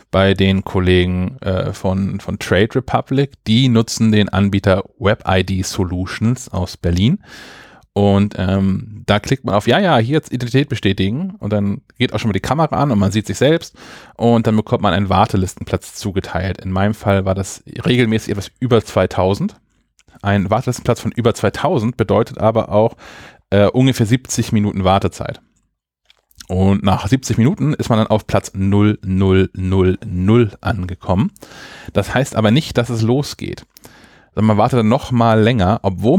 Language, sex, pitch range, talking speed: German, male, 95-125 Hz, 160 wpm